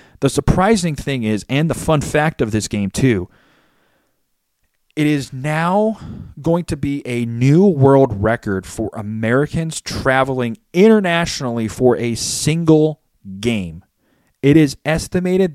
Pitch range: 100-150 Hz